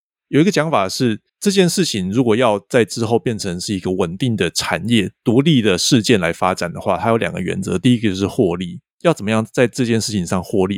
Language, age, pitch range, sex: Chinese, 30-49, 95-125 Hz, male